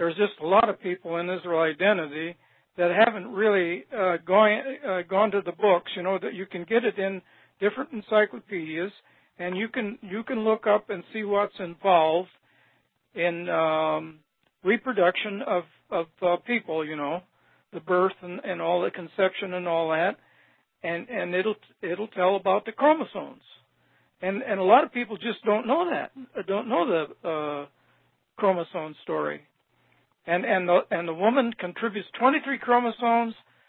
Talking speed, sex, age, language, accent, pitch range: 165 wpm, male, 60-79, English, American, 175-220 Hz